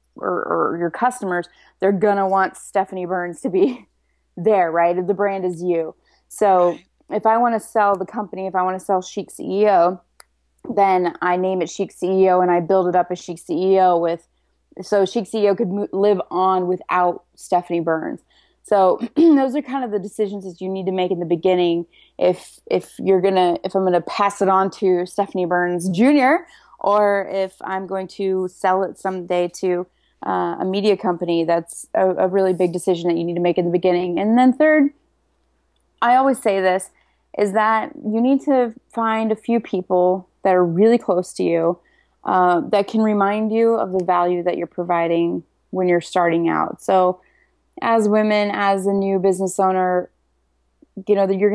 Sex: female